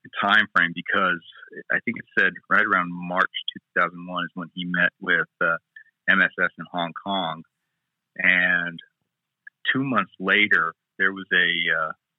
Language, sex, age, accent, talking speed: English, male, 40-59, American, 150 wpm